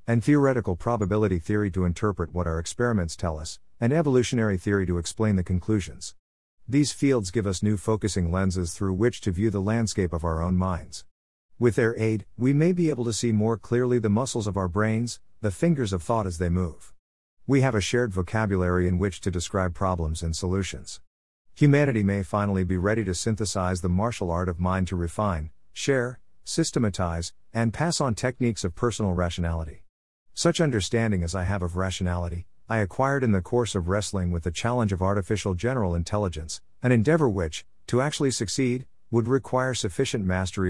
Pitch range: 90-115 Hz